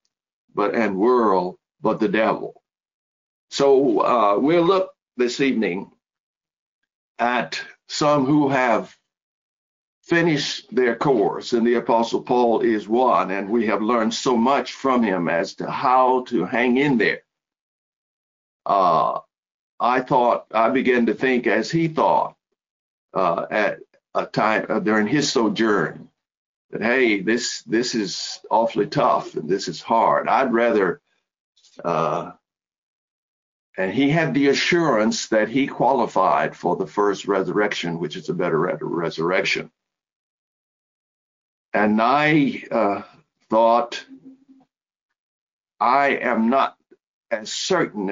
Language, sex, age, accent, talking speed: English, male, 60-79, American, 120 wpm